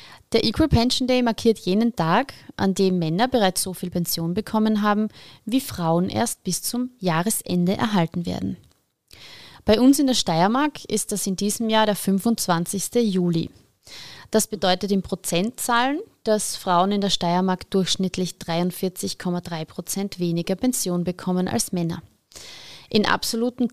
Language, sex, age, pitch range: German, female, 30-49, 180-225 Hz